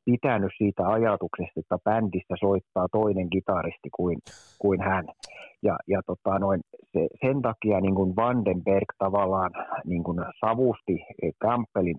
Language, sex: Finnish, male